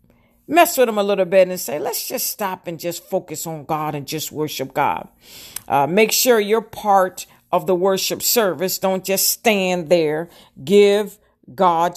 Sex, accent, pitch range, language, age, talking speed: female, American, 170-205 Hz, English, 50-69, 175 wpm